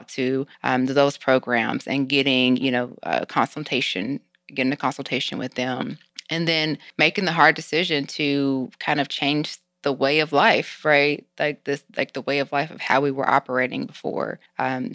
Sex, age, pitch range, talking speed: female, 20-39, 130-145 Hz, 175 wpm